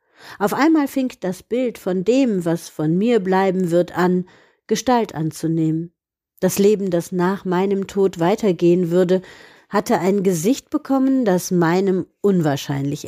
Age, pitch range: 50-69, 165-205 Hz